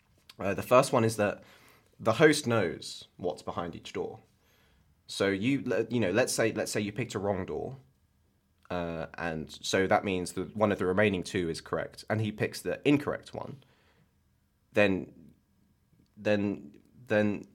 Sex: male